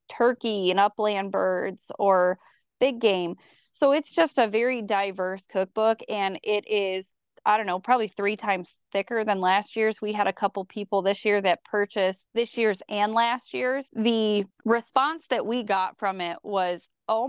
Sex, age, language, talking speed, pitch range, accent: female, 20-39, English, 175 wpm, 195-245 Hz, American